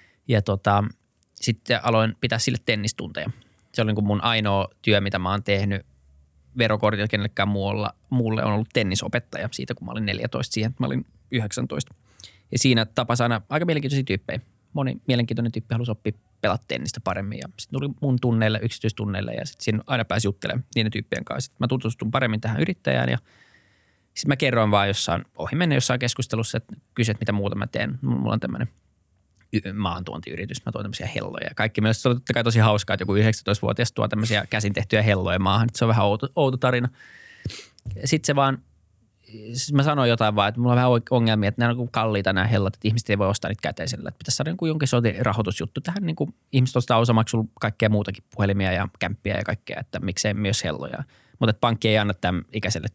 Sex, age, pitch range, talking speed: male, 20-39, 100-120 Hz, 195 wpm